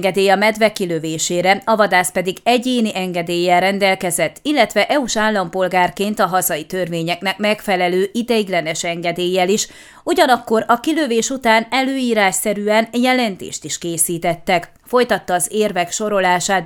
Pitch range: 185-225 Hz